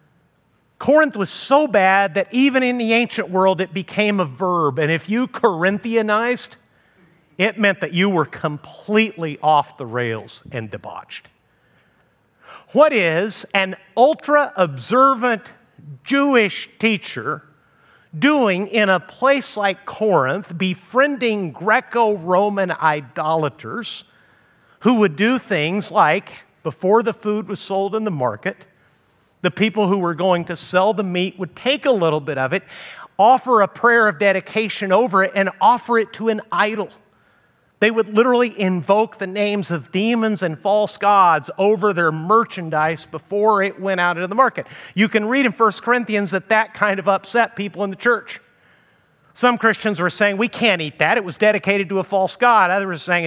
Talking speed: 160 wpm